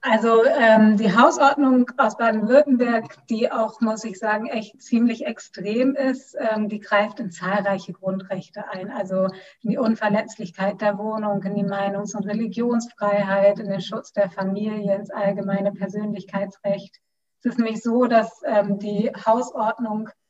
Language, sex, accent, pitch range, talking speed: German, female, German, 200-235 Hz, 145 wpm